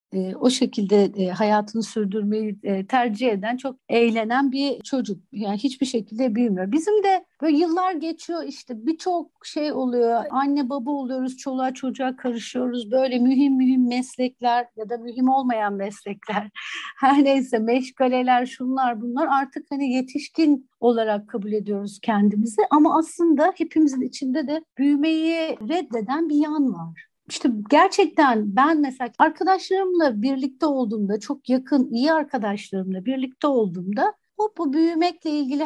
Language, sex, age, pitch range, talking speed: Turkish, female, 60-79, 235-300 Hz, 125 wpm